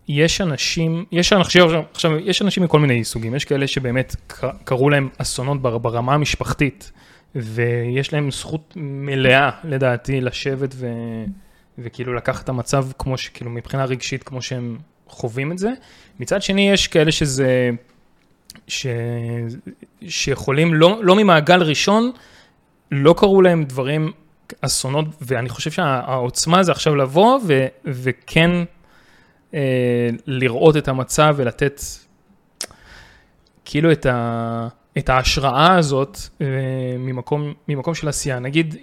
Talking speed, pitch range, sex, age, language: 115 wpm, 130-165 Hz, male, 20-39, Hebrew